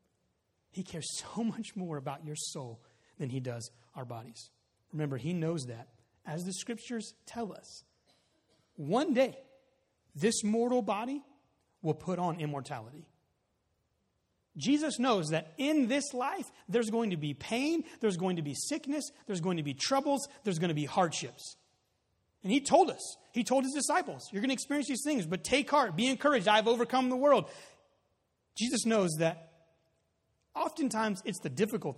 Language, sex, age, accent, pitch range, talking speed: English, male, 30-49, American, 145-235 Hz, 165 wpm